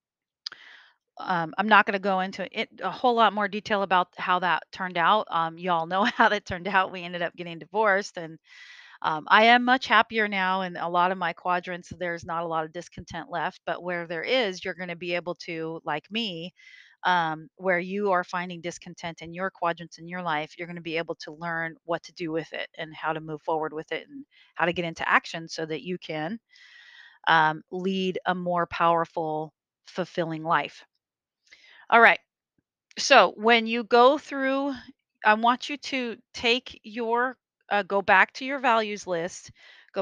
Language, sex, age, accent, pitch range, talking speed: English, female, 30-49, American, 170-215 Hz, 195 wpm